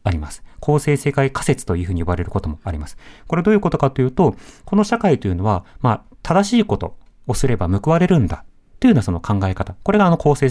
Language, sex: Japanese, male